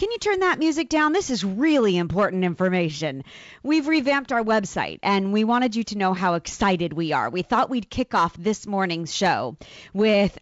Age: 30-49